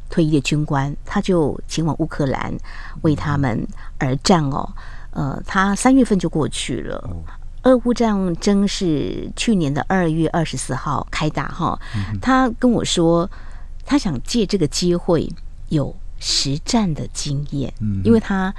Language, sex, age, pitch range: Chinese, female, 50-69, 140-195 Hz